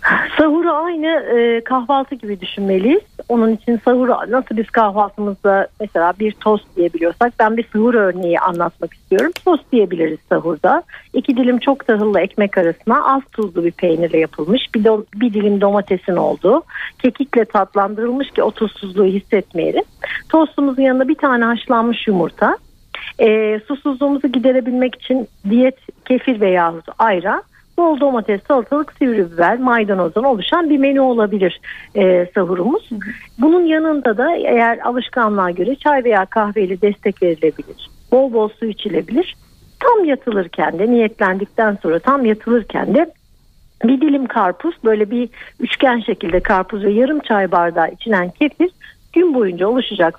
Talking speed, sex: 135 wpm, female